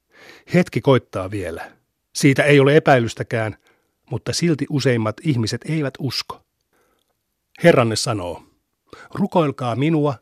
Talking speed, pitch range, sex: 100 wpm, 115-145 Hz, male